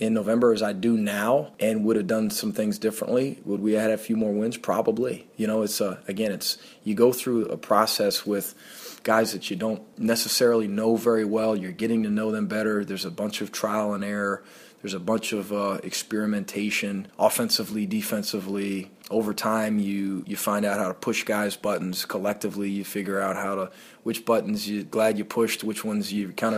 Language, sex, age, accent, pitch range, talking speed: English, male, 20-39, American, 100-115 Hz, 200 wpm